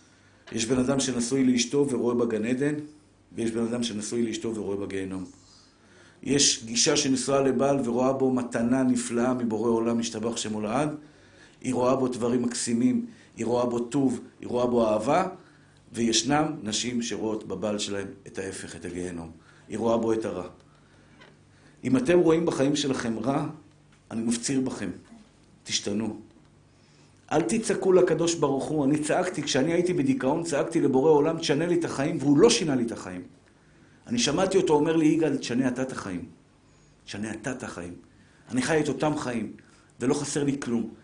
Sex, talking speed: male, 135 wpm